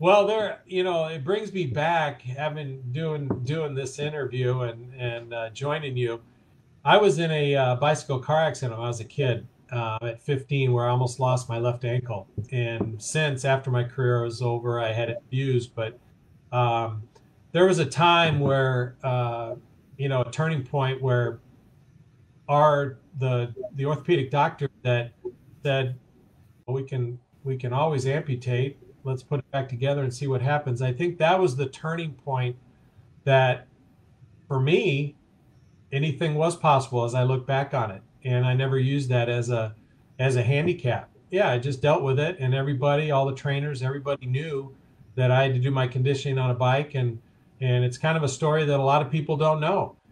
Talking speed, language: 185 wpm, English